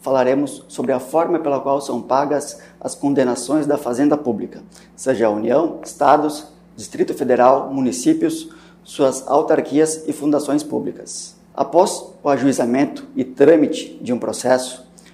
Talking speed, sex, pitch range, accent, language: 130 wpm, male, 140-175 Hz, Brazilian, Portuguese